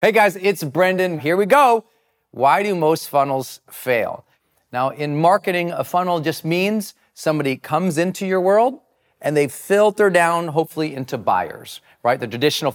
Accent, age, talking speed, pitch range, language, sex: American, 40-59, 160 wpm, 125-170 Hz, English, male